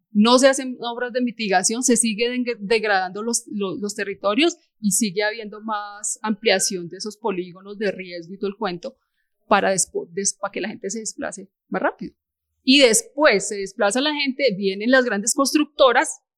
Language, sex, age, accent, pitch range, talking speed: Spanish, female, 30-49, Colombian, 200-245 Hz, 175 wpm